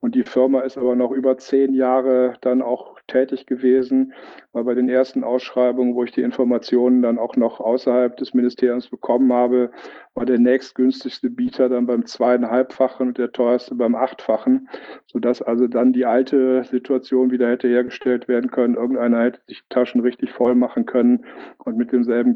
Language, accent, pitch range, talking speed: German, German, 120-130 Hz, 170 wpm